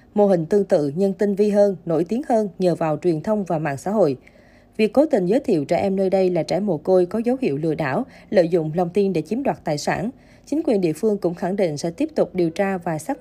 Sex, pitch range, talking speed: female, 175-220 Hz, 275 wpm